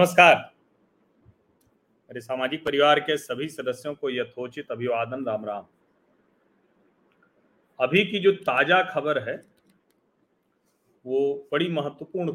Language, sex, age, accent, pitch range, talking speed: Hindi, male, 40-59, native, 135-185 Hz, 100 wpm